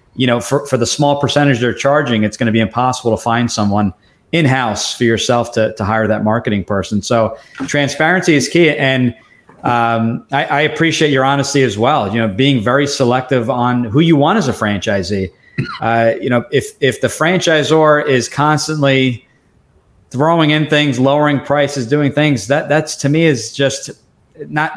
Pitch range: 115-140 Hz